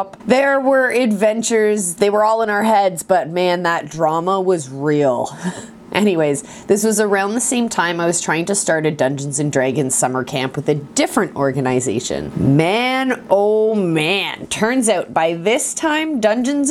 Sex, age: female, 20-39